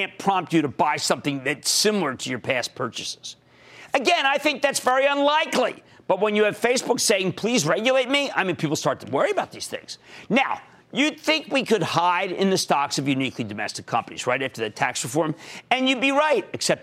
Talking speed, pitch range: 210 wpm, 165-255 Hz